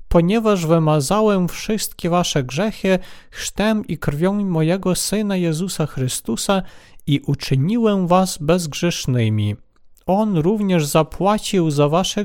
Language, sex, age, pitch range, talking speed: Polish, male, 40-59, 140-195 Hz, 105 wpm